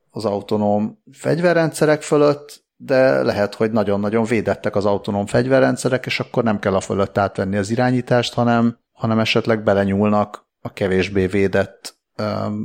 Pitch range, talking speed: 100-120 Hz, 140 wpm